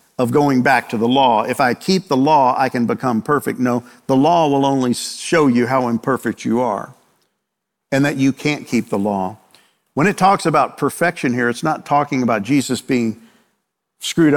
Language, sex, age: English, male, 50-69